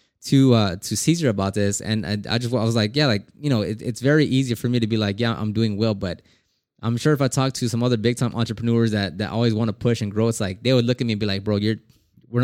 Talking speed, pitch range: 300 wpm, 110-125 Hz